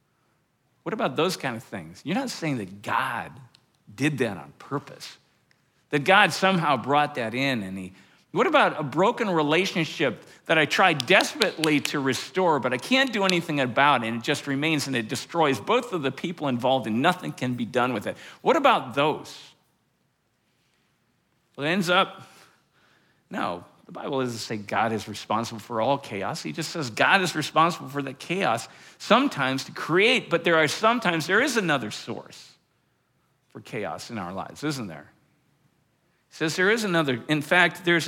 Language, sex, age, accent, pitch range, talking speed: English, male, 50-69, American, 130-170 Hz, 180 wpm